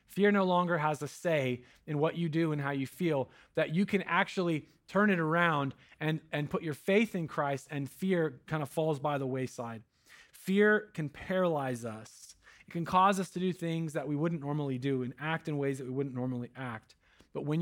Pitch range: 130-165 Hz